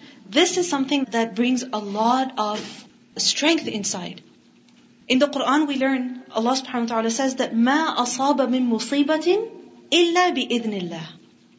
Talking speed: 145 wpm